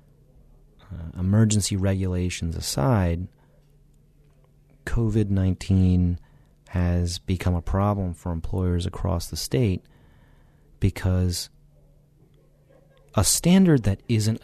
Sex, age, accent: male, 30-49, American